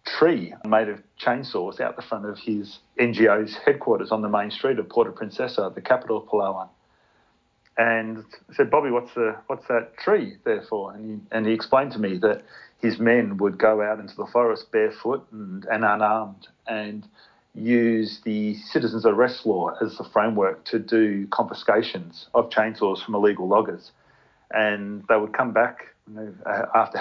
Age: 40-59